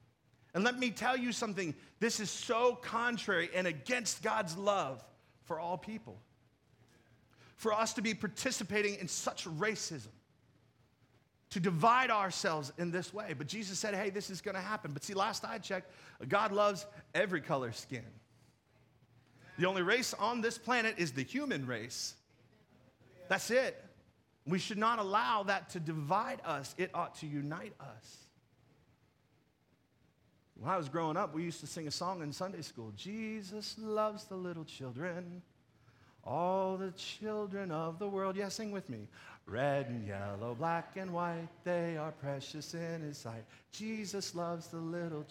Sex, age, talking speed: male, 40-59, 160 wpm